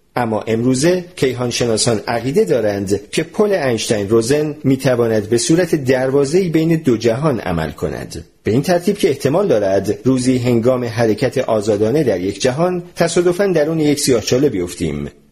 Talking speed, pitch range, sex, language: 155 wpm, 105-160 Hz, male, Persian